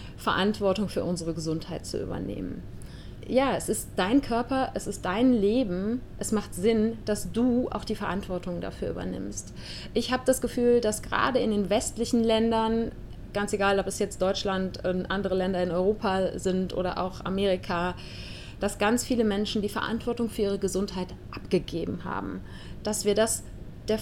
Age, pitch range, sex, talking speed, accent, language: 30-49, 185-235 Hz, female, 160 wpm, German, German